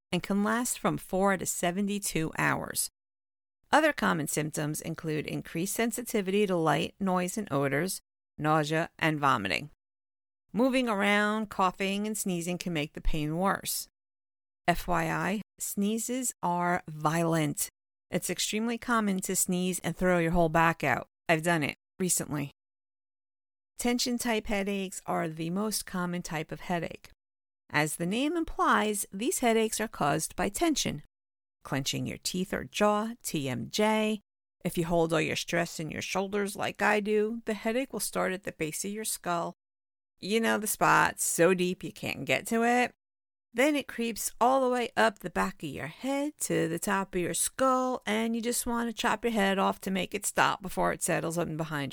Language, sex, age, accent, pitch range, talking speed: English, female, 50-69, American, 160-220 Hz, 170 wpm